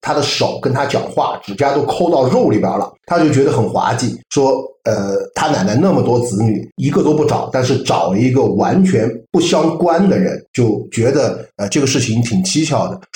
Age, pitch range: 50-69, 120-190 Hz